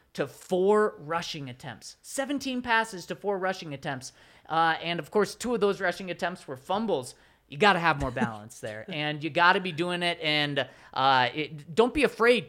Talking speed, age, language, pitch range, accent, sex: 195 wpm, 30-49, English, 155-210 Hz, American, male